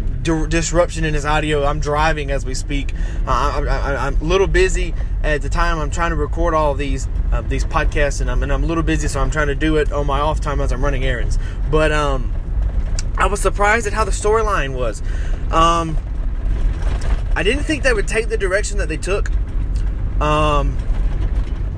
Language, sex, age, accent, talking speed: English, male, 20-39, American, 200 wpm